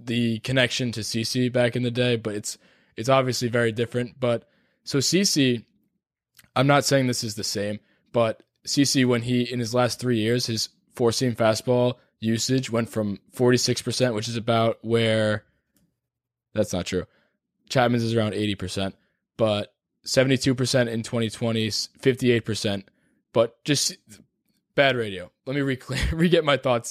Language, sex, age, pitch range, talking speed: English, male, 20-39, 115-135 Hz, 150 wpm